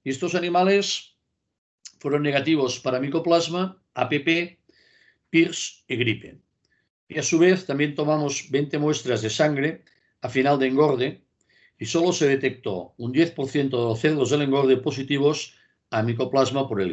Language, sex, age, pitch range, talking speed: Spanish, male, 50-69, 125-160 Hz, 145 wpm